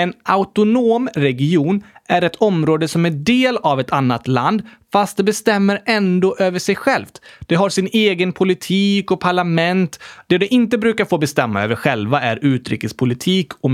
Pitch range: 130-215 Hz